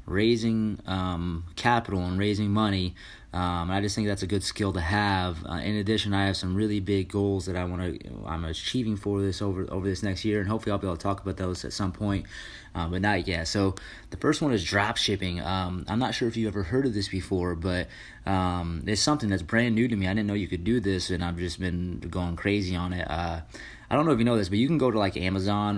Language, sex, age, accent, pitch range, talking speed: English, male, 20-39, American, 90-110 Hz, 260 wpm